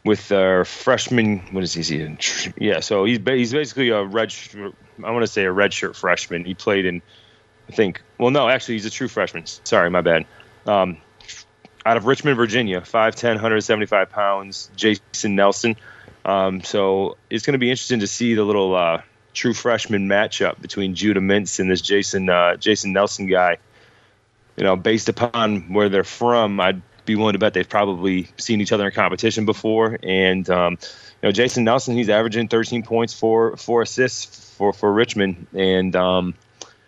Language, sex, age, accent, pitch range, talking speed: English, male, 30-49, American, 95-115 Hz, 180 wpm